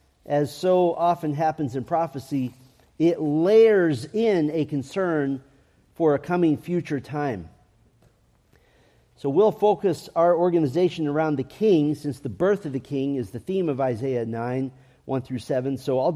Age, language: 50-69, English